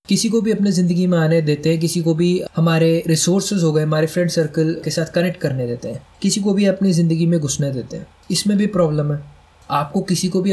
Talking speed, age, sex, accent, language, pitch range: 240 wpm, 20-39, male, native, Hindi, 145-180 Hz